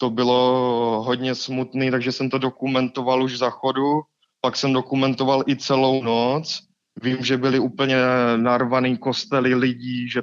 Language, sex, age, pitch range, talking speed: Czech, male, 20-39, 125-140 Hz, 145 wpm